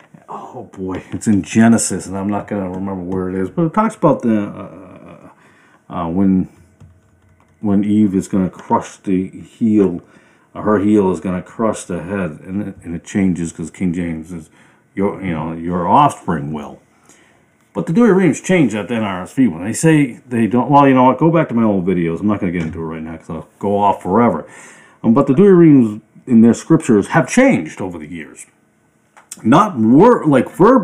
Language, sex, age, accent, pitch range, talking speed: English, male, 40-59, American, 90-140 Hz, 210 wpm